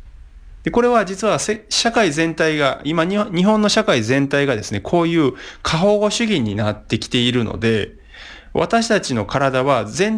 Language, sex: Japanese, male